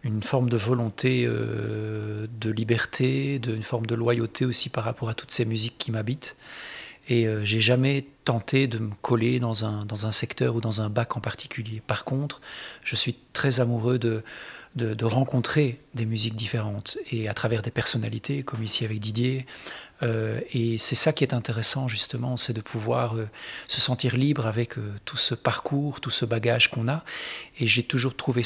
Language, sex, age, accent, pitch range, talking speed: French, male, 40-59, French, 115-130 Hz, 190 wpm